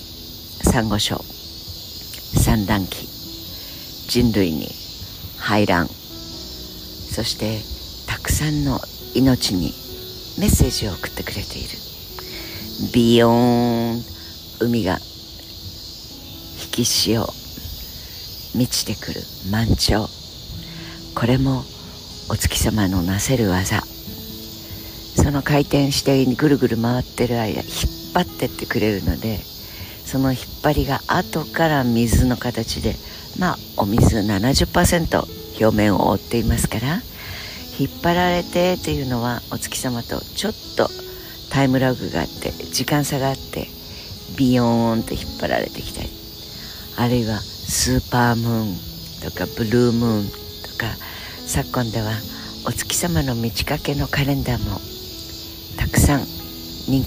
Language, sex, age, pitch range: Japanese, female, 60-79, 85-120 Hz